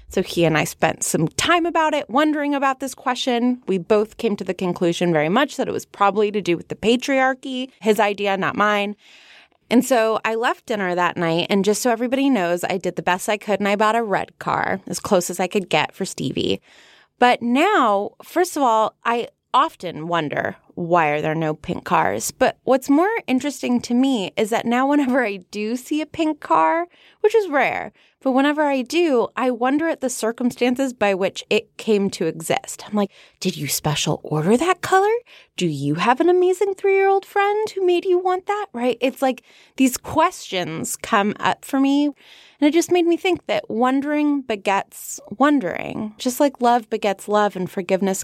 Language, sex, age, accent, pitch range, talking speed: English, female, 20-39, American, 195-285 Hz, 200 wpm